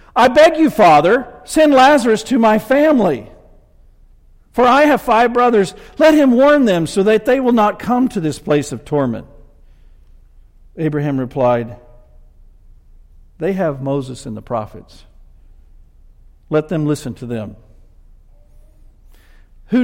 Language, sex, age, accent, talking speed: English, male, 50-69, American, 130 wpm